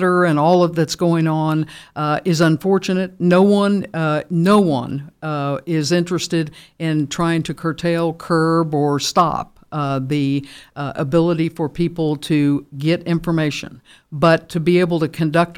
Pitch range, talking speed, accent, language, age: 155-180 Hz, 150 wpm, American, English, 60-79